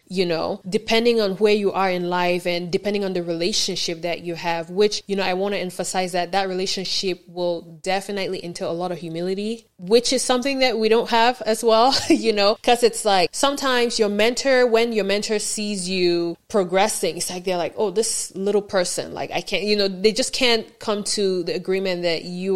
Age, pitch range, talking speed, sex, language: 20-39, 175-205 Hz, 210 wpm, female, English